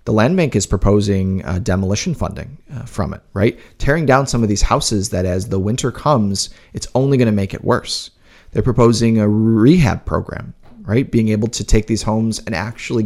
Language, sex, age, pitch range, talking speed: English, male, 30-49, 100-125 Hz, 200 wpm